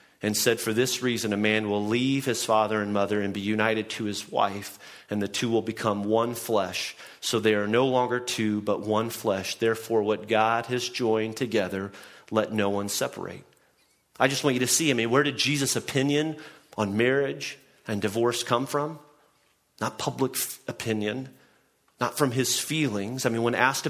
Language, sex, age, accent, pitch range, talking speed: English, male, 40-59, American, 105-125 Hz, 185 wpm